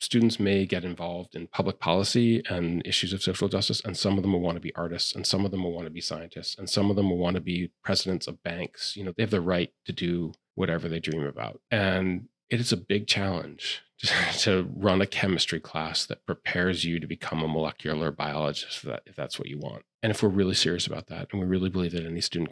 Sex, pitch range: male, 85-100 Hz